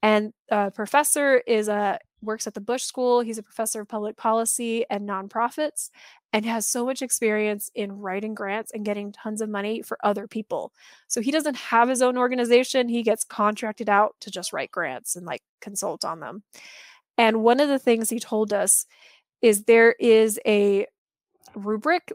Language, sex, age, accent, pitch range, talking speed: English, female, 20-39, American, 215-255 Hz, 175 wpm